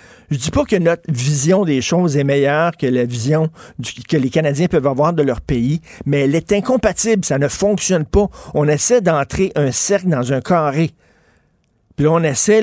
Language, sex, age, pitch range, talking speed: French, male, 50-69, 145-200 Hz, 205 wpm